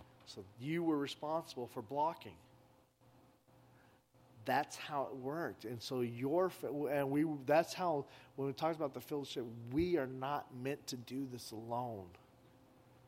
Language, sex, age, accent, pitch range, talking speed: English, male, 40-59, American, 130-170 Hz, 140 wpm